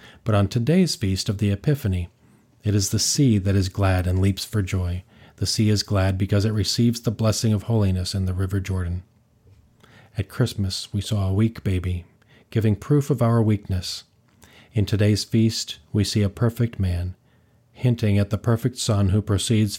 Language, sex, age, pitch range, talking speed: English, male, 40-59, 100-115 Hz, 180 wpm